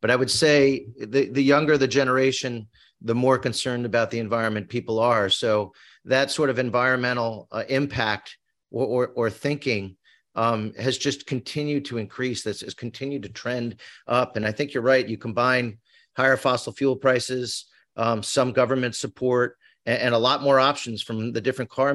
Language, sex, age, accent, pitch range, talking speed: English, male, 40-59, American, 120-140 Hz, 180 wpm